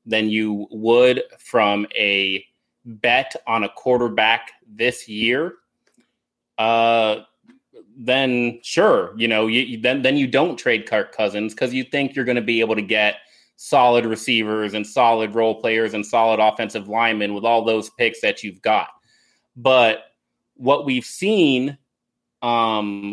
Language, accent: English, American